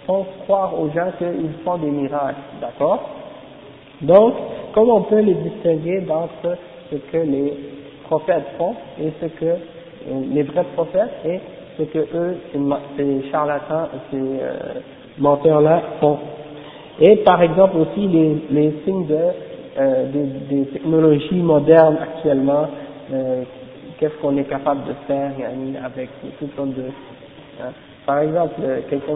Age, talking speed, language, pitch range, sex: 50-69, 140 wpm, French, 140-175 Hz, male